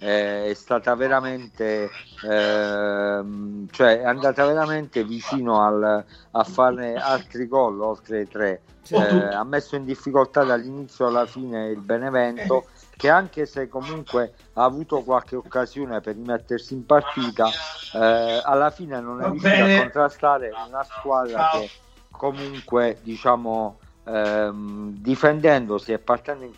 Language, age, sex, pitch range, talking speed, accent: Italian, 50-69, male, 110-135 Hz, 130 wpm, native